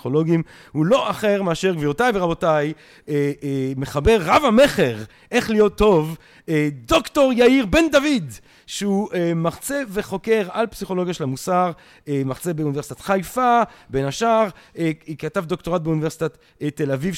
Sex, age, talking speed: male, 40-59, 115 wpm